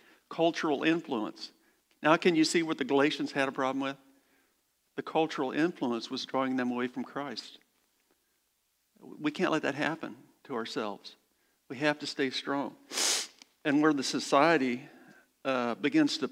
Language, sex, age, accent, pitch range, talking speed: English, male, 50-69, American, 125-160 Hz, 150 wpm